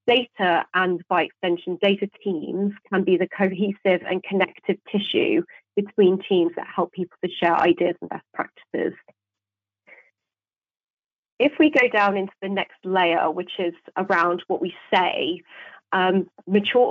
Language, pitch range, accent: English, 175-205 Hz, British